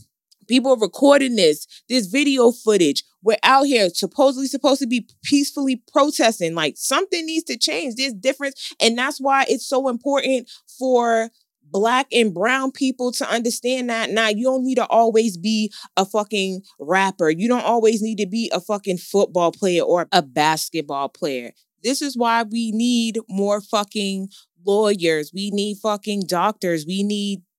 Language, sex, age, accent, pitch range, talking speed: English, female, 20-39, American, 195-255 Hz, 165 wpm